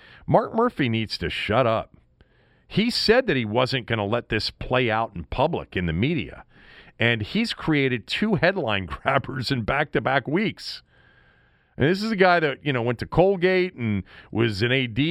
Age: 40-59